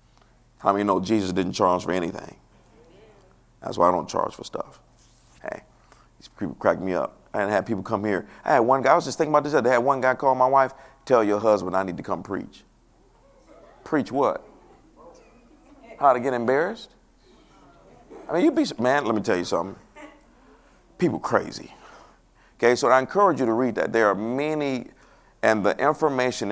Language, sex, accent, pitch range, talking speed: English, male, American, 100-130 Hz, 190 wpm